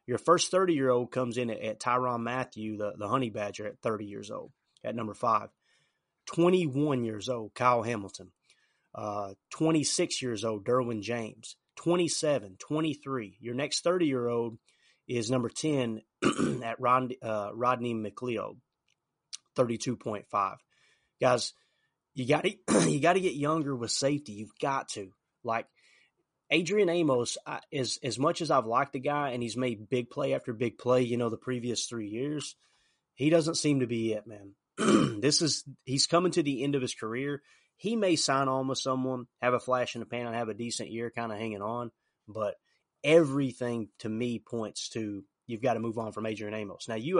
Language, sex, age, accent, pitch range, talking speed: English, male, 30-49, American, 115-145 Hz, 180 wpm